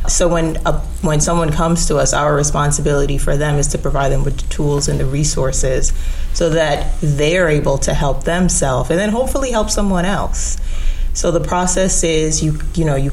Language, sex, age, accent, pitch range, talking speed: English, female, 30-49, American, 135-155 Hz, 190 wpm